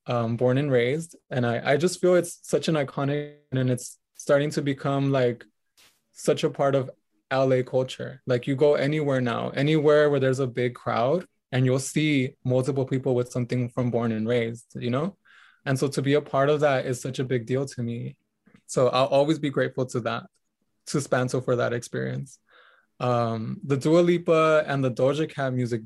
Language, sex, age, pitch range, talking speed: English, male, 20-39, 125-155 Hz, 195 wpm